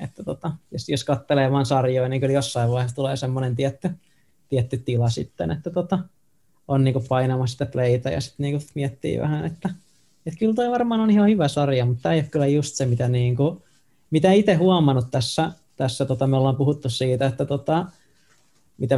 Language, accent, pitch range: Finnish, native, 130-155 Hz